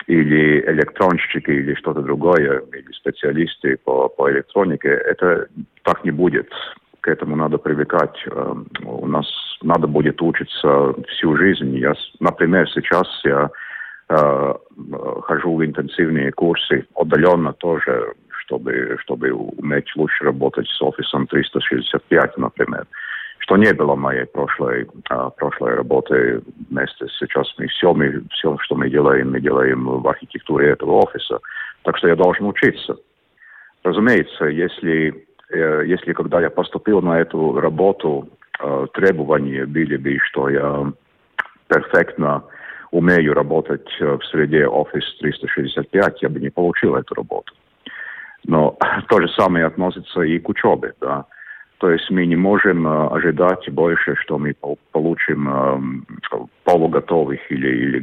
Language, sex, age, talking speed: Russian, male, 50-69, 130 wpm